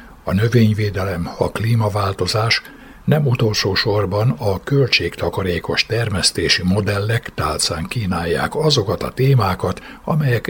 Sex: male